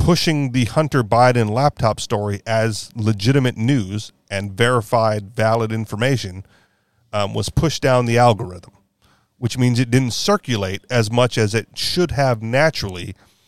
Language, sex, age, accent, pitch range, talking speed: English, male, 40-59, American, 105-130 Hz, 140 wpm